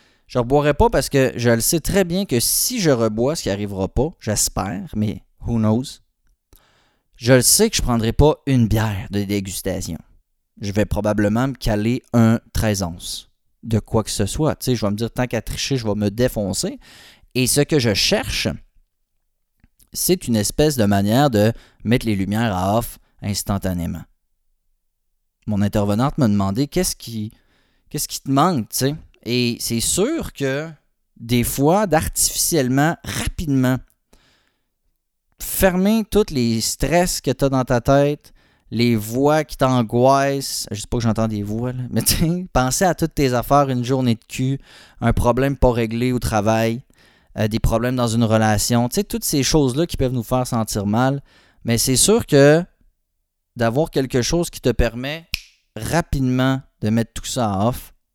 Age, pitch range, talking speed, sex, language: 30-49, 105-135 Hz, 175 wpm, male, French